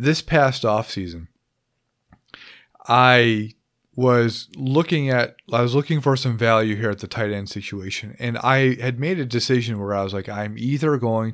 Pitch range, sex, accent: 105-130 Hz, male, American